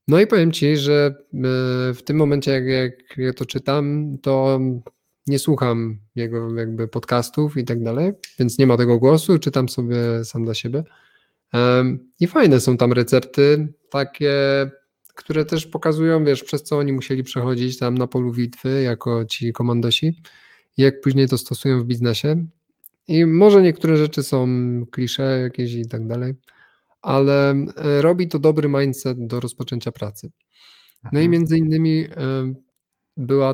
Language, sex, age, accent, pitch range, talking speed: Polish, male, 20-39, native, 120-145 Hz, 150 wpm